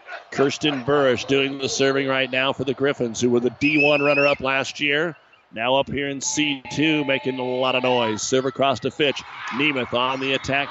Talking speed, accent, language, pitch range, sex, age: 195 wpm, American, English, 135-155 Hz, male, 50-69